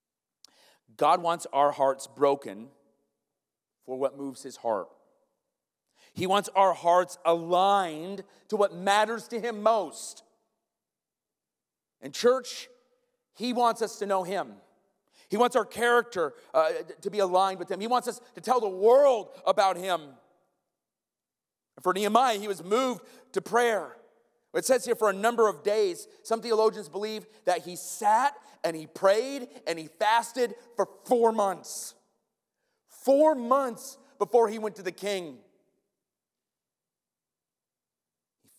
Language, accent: English, American